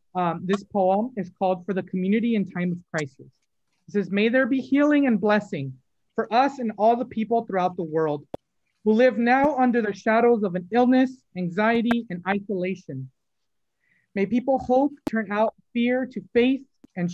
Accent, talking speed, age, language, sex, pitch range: American, 175 wpm, 30-49, English, male, 185-245 Hz